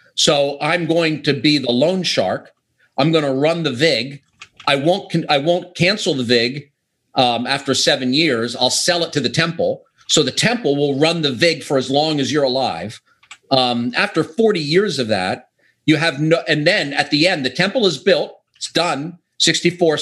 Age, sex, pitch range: 50-69, male, 125-160 Hz